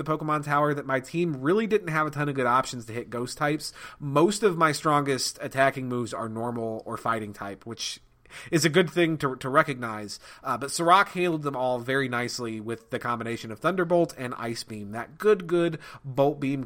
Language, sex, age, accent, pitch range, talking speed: English, male, 30-49, American, 125-165 Hz, 210 wpm